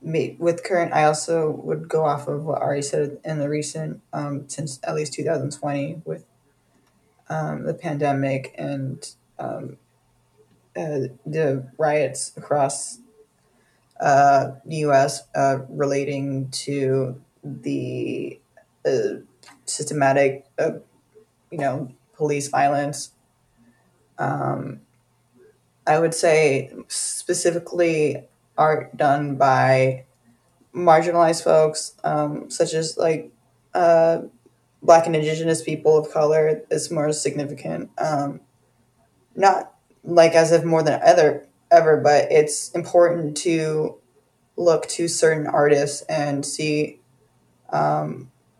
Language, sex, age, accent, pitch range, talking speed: English, female, 20-39, American, 140-160 Hz, 110 wpm